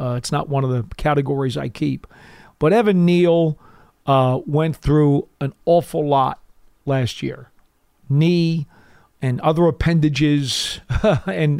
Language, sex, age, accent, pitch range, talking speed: English, male, 40-59, American, 140-165 Hz, 130 wpm